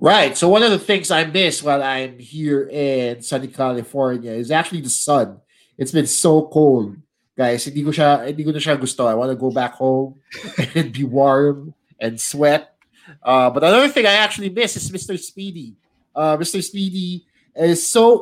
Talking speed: 160 wpm